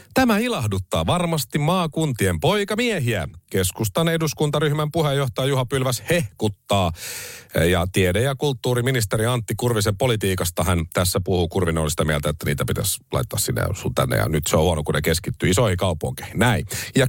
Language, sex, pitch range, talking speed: Finnish, male, 100-150 Hz, 150 wpm